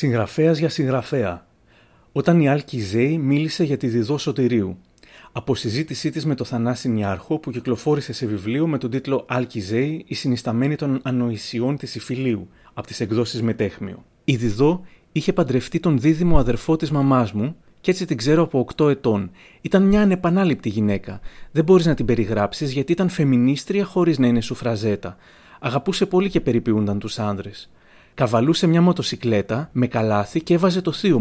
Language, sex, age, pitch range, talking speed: Greek, male, 30-49, 115-160 Hz, 160 wpm